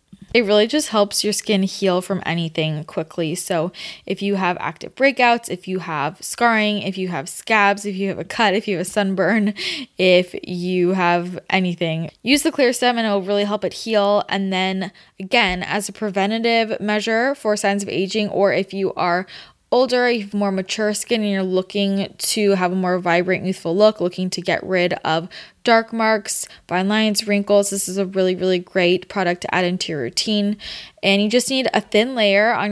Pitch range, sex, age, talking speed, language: 185-220 Hz, female, 10-29, 200 wpm, English